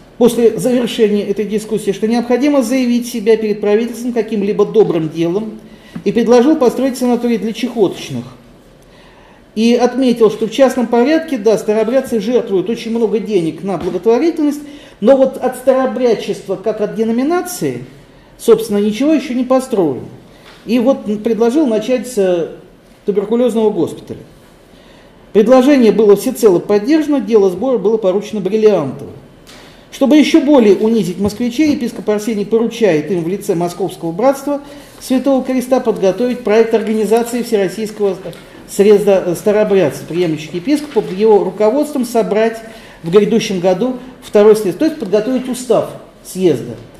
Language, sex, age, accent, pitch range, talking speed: Russian, male, 40-59, native, 205-245 Hz, 125 wpm